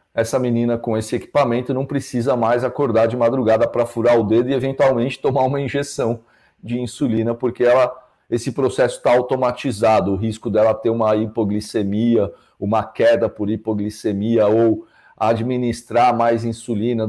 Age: 40-59